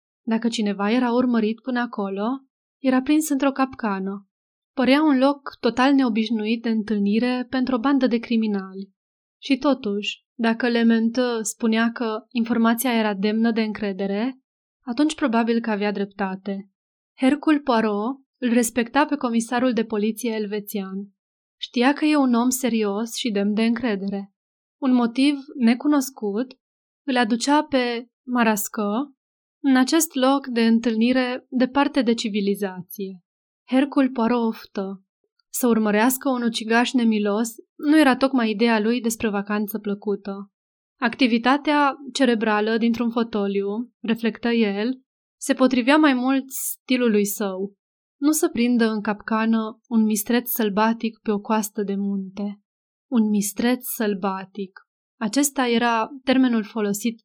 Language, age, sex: Romanian, 20-39, female